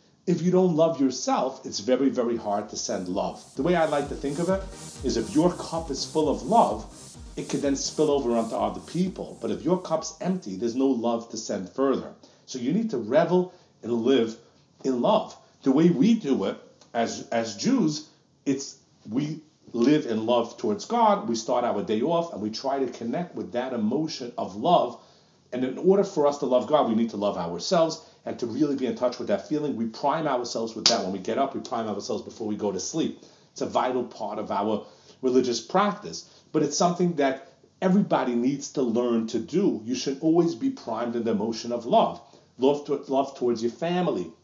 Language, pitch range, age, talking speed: English, 120-175 Hz, 40-59, 215 wpm